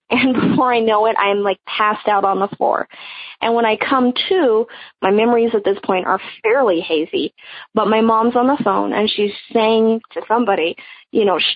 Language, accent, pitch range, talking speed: English, American, 210-250 Hz, 195 wpm